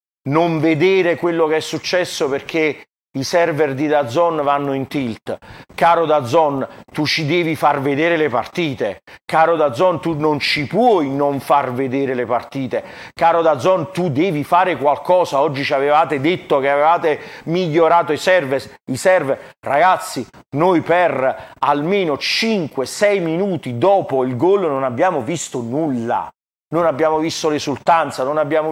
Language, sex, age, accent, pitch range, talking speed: Italian, male, 40-59, native, 150-185 Hz, 145 wpm